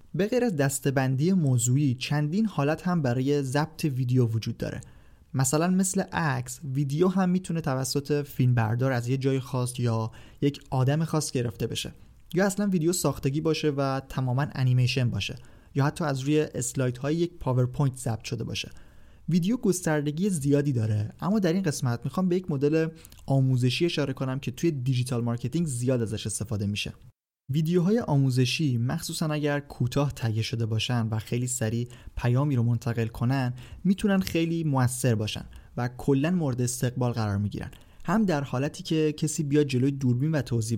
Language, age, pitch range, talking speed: Persian, 30-49, 120-155 Hz, 160 wpm